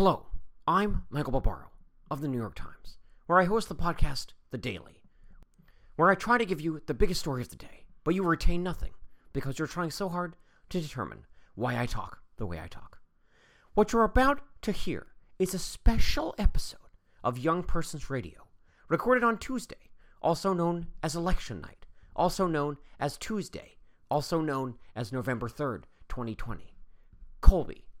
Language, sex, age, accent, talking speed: English, male, 40-59, American, 165 wpm